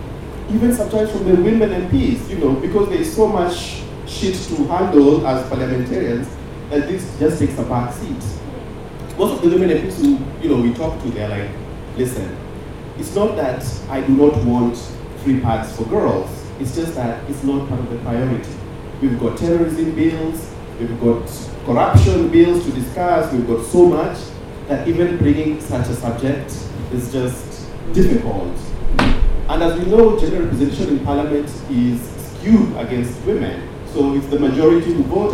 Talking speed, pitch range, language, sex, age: 170 wpm, 115-155 Hz, English, male, 30-49